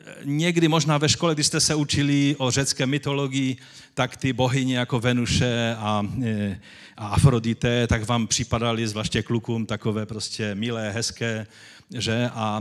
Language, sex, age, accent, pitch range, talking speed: Czech, male, 40-59, native, 105-130 Hz, 140 wpm